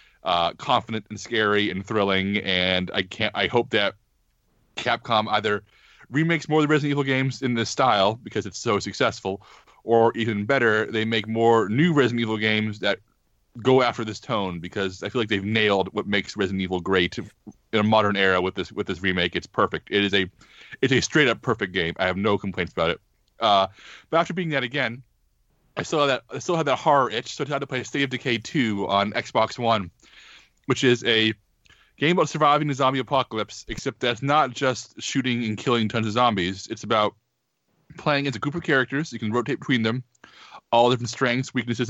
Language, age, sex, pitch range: English, 30-49, male, 100-125 Hz